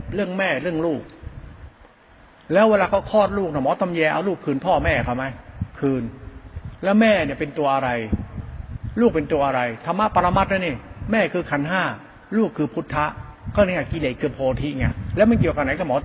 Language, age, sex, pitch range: Thai, 60-79, male, 125-210 Hz